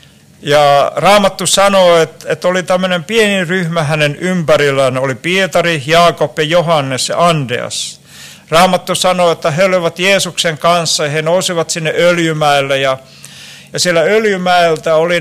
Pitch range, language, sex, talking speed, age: 155-185 Hz, Finnish, male, 140 wpm, 60-79